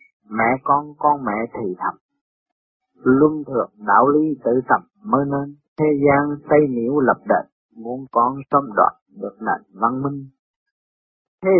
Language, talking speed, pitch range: Vietnamese, 150 wpm, 125-160 Hz